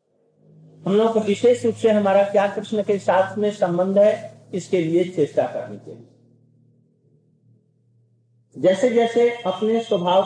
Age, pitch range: 50-69, 140-205 Hz